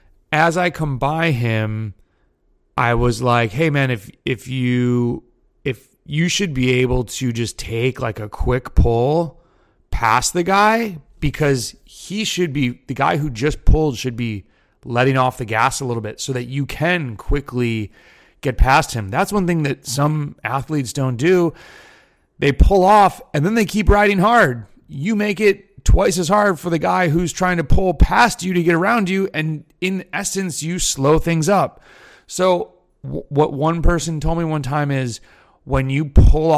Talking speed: 180 wpm